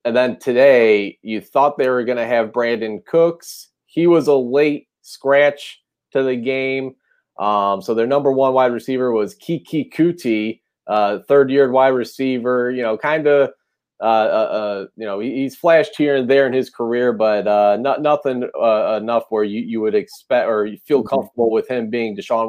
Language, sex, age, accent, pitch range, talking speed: English, male, 30-49, American, 115-140 Hz, 185 wpm